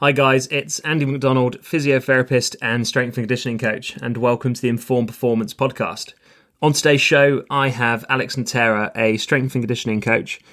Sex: male